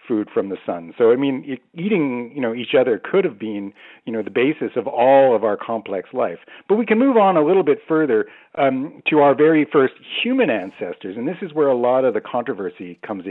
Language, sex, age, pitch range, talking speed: English, male, 50-69, 115-155 Hz, 230 wpm